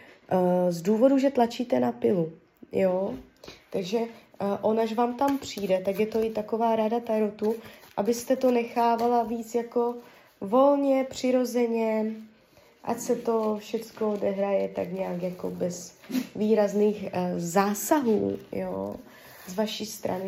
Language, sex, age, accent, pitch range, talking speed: Czech, female, 20-39, native, 190-235 Hz, 120 wpm